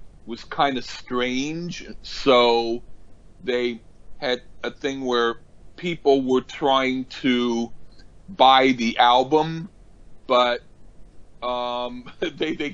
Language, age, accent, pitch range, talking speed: English, 40-59, American, 100-130 Hz, 100 wpm